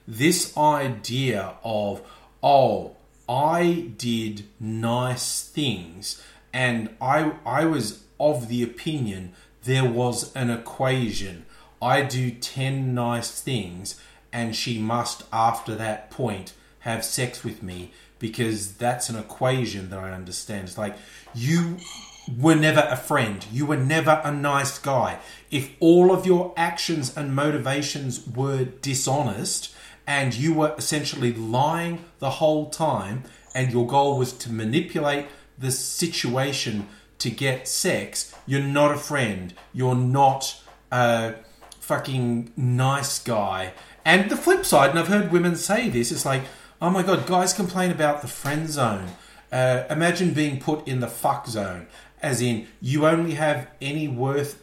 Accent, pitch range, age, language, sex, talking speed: Australian, 115-150 Hz, 30-49, English, male, 140 wpm